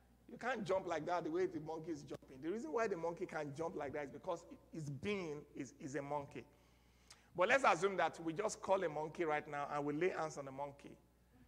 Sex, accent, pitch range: male, Nigerian, 140-185 Hz